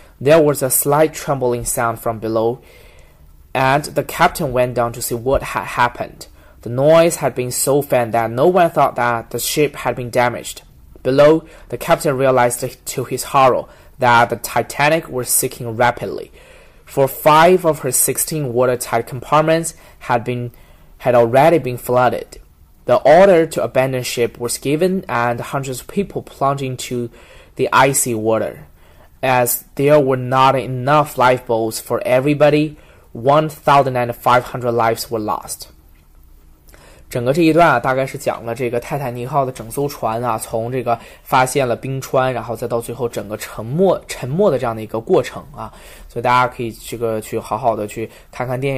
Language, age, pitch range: Chinese, 20-39, 115-140 Hz